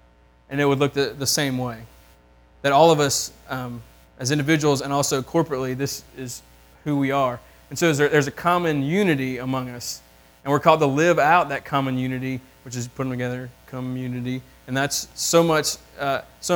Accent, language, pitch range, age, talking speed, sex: American, English, 125-155 Hz, 20-39, 185 wpm, male